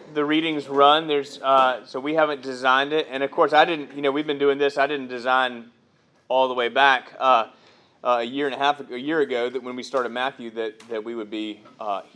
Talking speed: 235 wpm